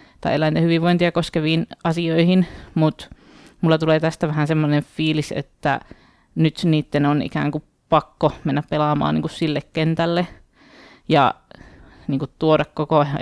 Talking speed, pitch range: 140 wpm, 150-170 Hz